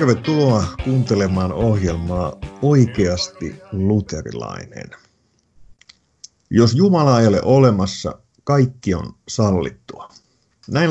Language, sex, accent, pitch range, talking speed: Finnish, male, native, 95-120 Hz, 75 wpm